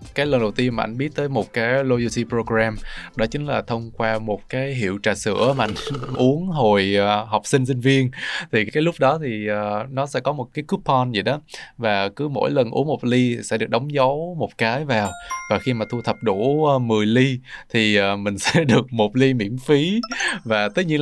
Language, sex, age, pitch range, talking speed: Vietnamese, male, 20-39, 105-135 Hz, 215 wpm